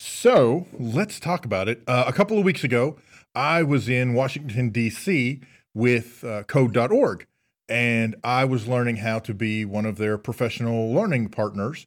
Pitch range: 110-135 Hz